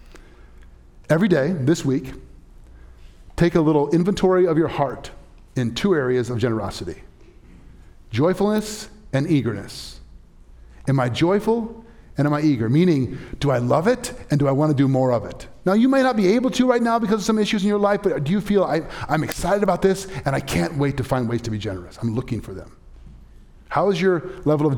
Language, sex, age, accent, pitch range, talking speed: English, male, 30-49, American, 120-200 Hz, 200 wpm